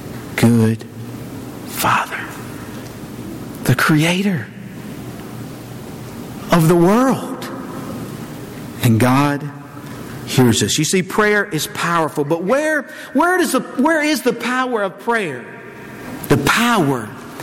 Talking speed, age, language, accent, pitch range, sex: 100 wpm, 50-69, English, American, 145-230 Hz, male